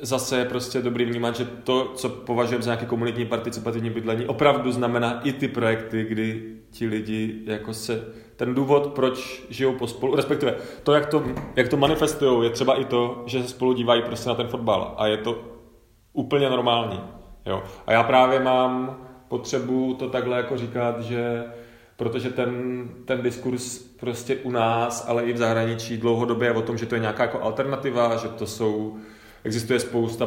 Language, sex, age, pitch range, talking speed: Czech, male, 30-49, 110-125 Hz, 180 wpm